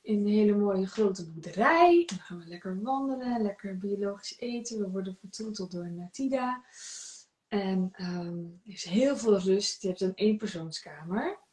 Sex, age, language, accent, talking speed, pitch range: female, 20-39, Dutch, Dutch, 155 wpm, 185-230 Hz